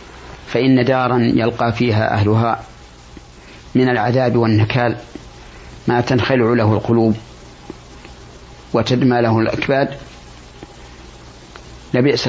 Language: Arabic